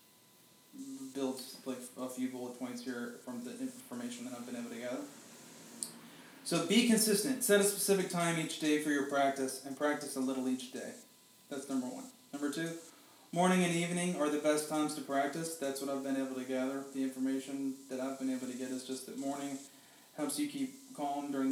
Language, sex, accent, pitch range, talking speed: English, male, American, 135-175 Hz, 200 wpm